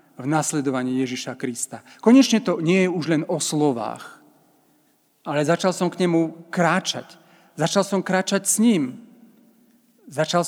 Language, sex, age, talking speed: Slovak, male, 40-59, 135 wpm